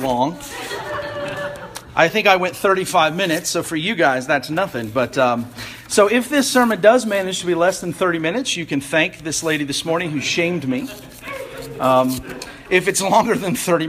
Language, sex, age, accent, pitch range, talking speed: English, male, 40-59, American, 145-210 Hz, 185 wpm